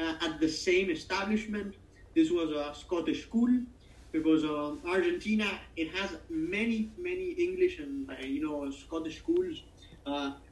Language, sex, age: English, male, 30-49